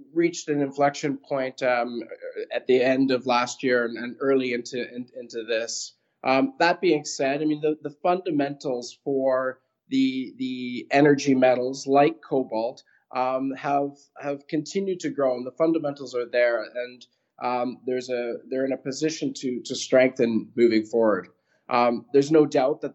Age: 20-39